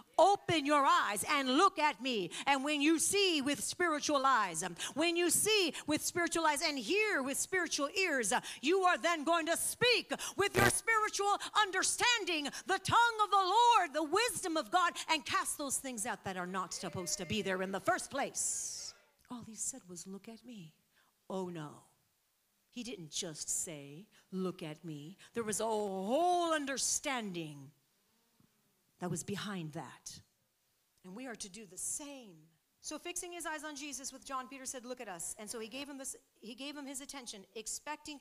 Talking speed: 185 wpm